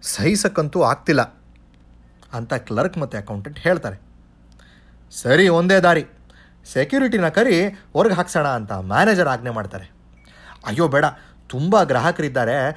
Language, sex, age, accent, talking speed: Kannada, male, 30-49, native, 105 wpm